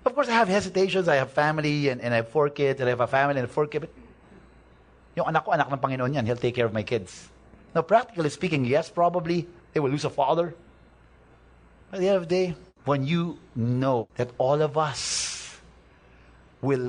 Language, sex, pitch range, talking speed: English, male, 110-155 Hz, 210 wpm